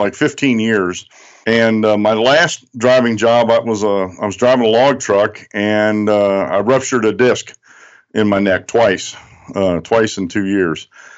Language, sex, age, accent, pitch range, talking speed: English, male, 50-69, American, 105-130 Hz, 185 wpm